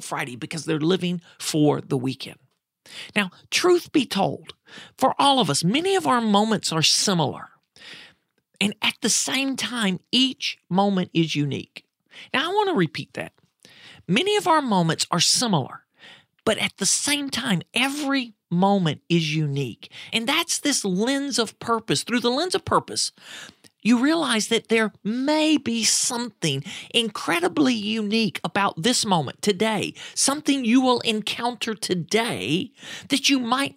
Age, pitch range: 40-59, 180-255 Hz